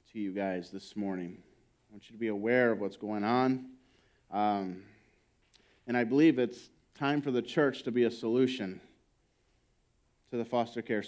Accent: American